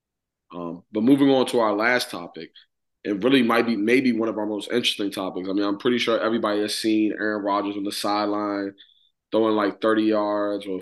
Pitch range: 105-125 Hz